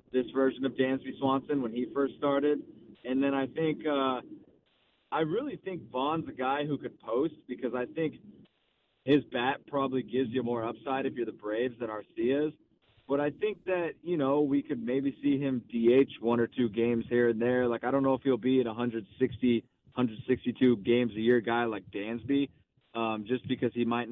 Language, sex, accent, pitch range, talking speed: English, male, American, 110-130 Hz, 200 wpm